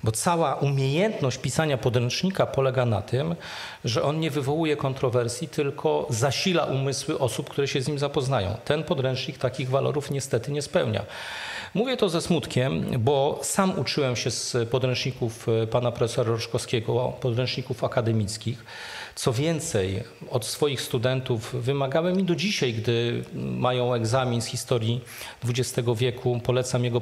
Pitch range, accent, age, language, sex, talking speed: 125-160 Hz, native, 40-59, Polish, male, 140 wpm